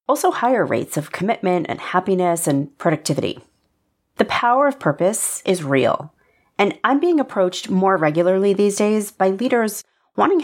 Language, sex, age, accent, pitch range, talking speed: English, female, 30-49, American, 165-225 Hz, 150 wpm